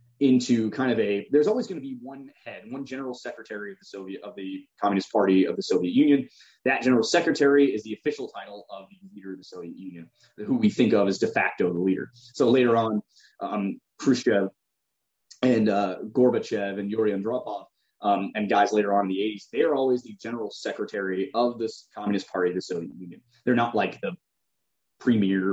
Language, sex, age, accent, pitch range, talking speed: English, male, 20-39, American, 100-130 Hz, 200 wpm